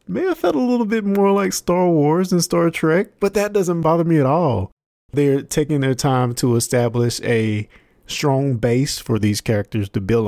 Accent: American